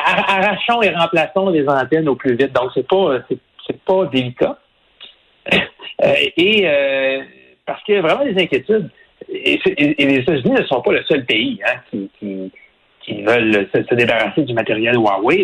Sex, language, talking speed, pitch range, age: male, French, 185 wpm, 120-195 Hz, 60-79